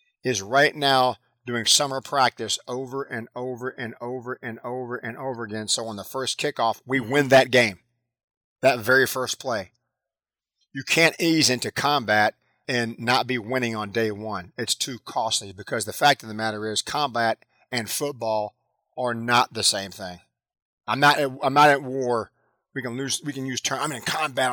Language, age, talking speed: English, 40-59, 185 wpm